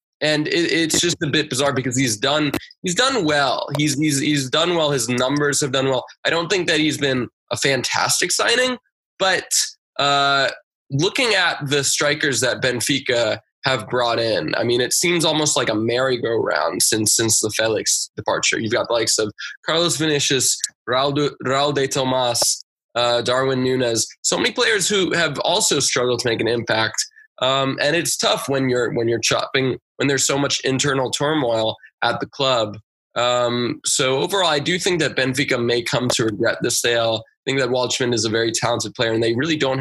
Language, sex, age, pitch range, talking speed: English, male, 20-39, 125-150 Hz, 195 wpm